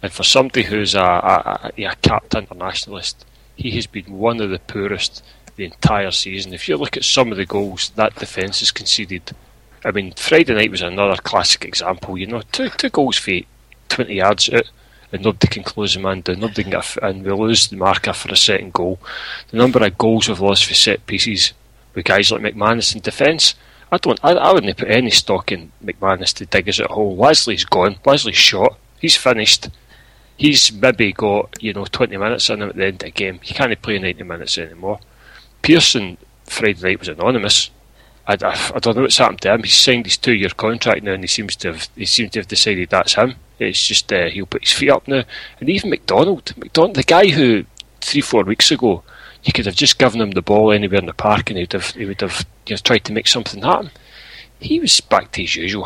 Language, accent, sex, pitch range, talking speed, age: English, British, male, 95-110 Hz, 215 wpm, 30-49